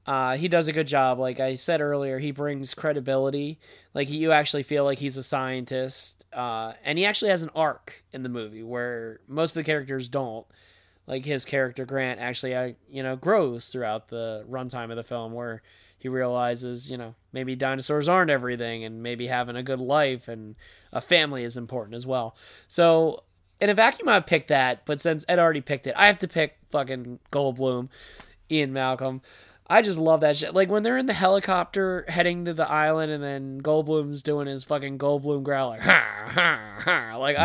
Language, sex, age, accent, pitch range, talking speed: English, male, 20-39, American, 125-155 Hz, 195 wpm